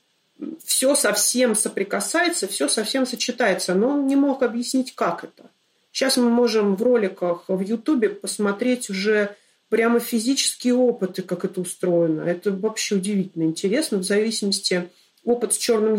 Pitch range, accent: 185-240 Hz, native